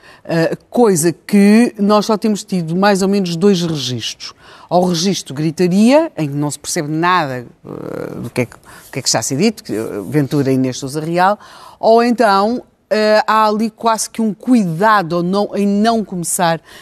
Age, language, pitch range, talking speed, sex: 50-69, Portuguese, 165-215 Hz, 195 wpm, female